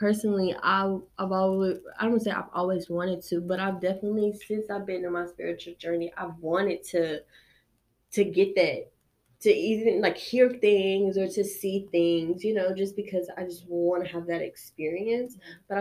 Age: 20-39